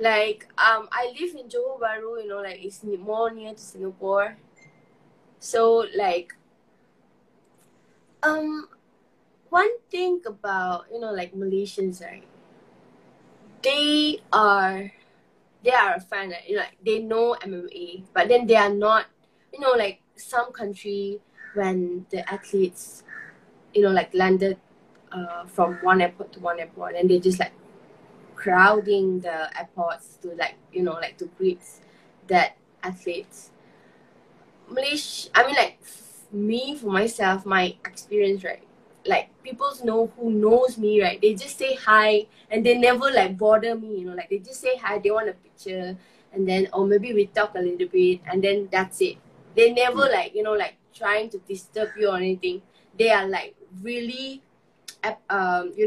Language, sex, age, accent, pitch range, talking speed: English, female, 20-39, Malaysian, 190-235 Hz, 160 wpm